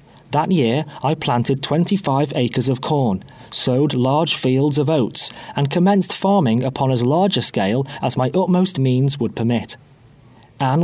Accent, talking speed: British, 155 wpm